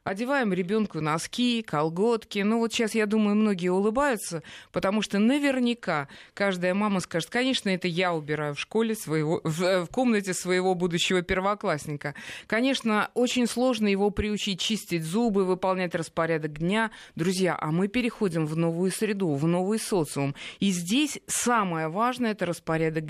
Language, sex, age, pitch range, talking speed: Russian, female, 20-39, 165-220 Hz, 140 wpm